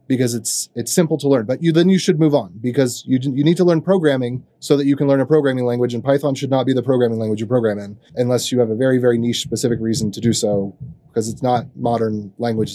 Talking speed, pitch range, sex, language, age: 265 wpm, 120-145 Hz, male, English, 30-49